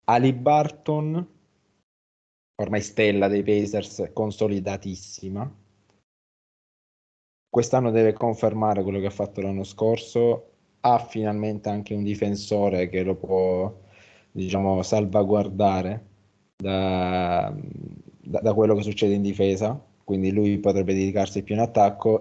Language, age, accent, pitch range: Italian, 20-39, native, 100-110 Hz